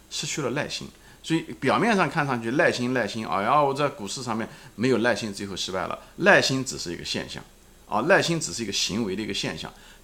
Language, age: Chinese, 50-69